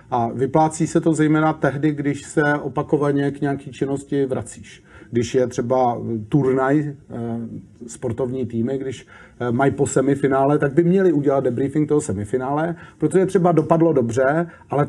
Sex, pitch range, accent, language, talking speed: male, 130-150 Hz, native, Czech, 140 wpm